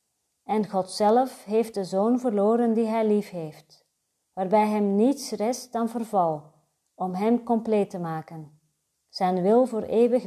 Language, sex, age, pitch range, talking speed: Dutch, female, 40-59, 190-250 Hz, 150 wpm